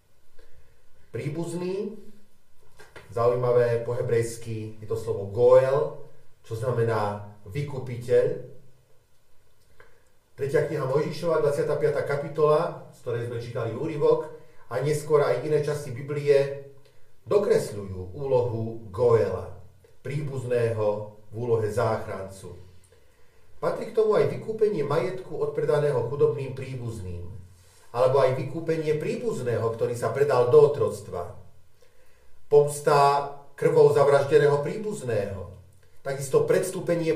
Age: 40-59